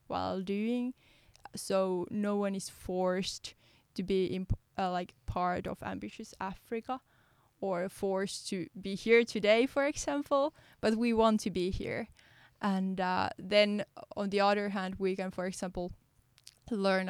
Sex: female